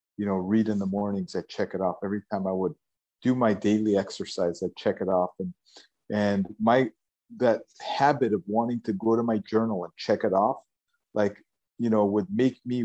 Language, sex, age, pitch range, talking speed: English, male, 50-69, 100-115 Hz, 205 wpm